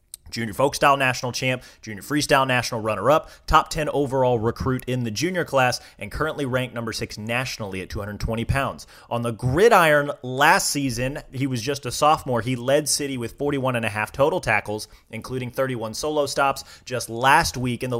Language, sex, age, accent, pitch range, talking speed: English, male, 30-49, American, 115-140 Hz, 185 wpm